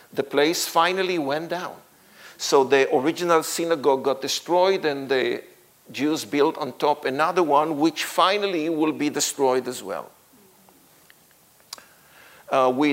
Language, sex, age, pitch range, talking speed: English, male, 50-69, 130-160 Hz, 130 wpm